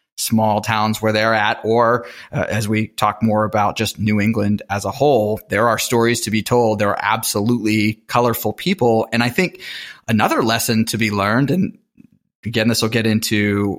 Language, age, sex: English, 30-49, male